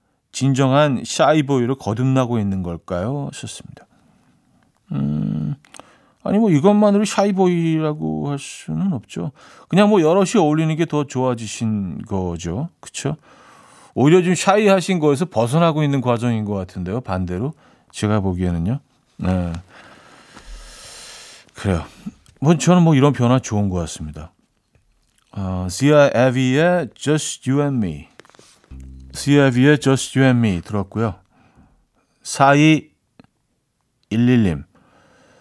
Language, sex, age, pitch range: Korean, male, 40-59, 105-155 Hz